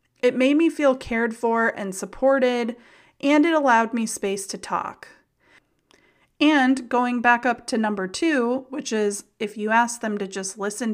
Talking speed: 170 wpm